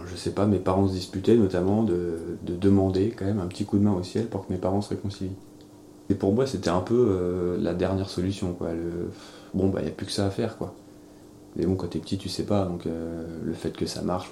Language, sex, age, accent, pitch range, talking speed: French, male, 20-39, French, 90-105 Hz, 260 wpm